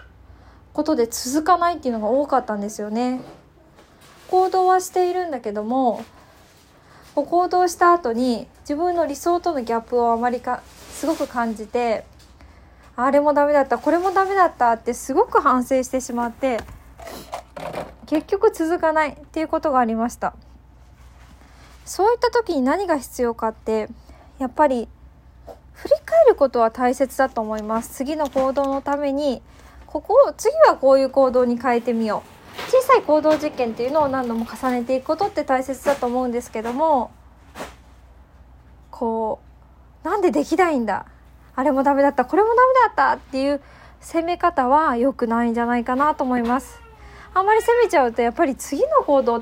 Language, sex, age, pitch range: Japanese, female, 20-39, 235-325 Hz